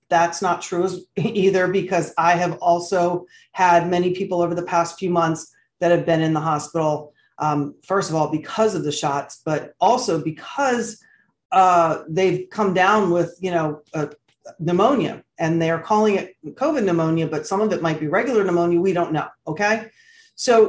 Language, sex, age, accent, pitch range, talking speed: English, female, 40-59, American, 170-215 Hz, 175 wpm